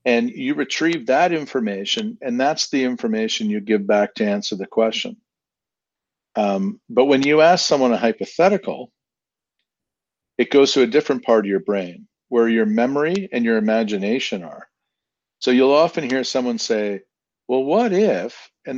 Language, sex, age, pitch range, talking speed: English, male, 50-69, 110-150 Hz, 160 wpm